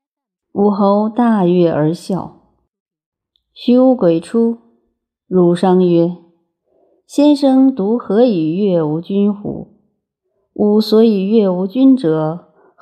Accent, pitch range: native, 170-225 Hz